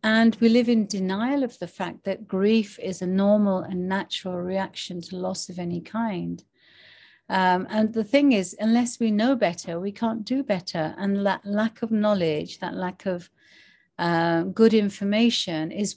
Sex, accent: female, British